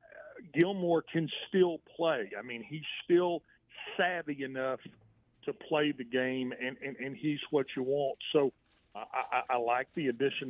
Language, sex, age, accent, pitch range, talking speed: English, male, 40-59, American, 125-150 Hz, 160 wpm